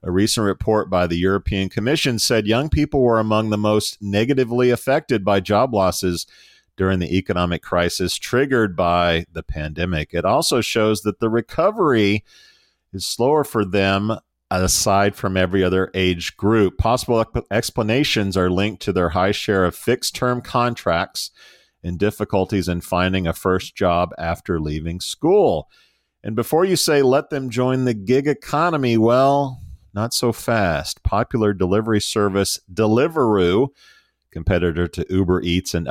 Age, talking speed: 40-59, 145 wpm